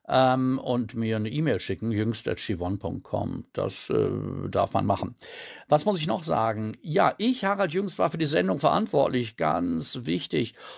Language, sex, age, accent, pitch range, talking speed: German, male, 60-79, German, 105-150 Hz, 150 wpm